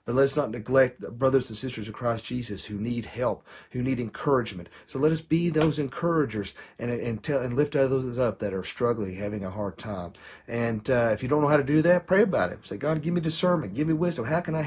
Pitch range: 110-155 Hz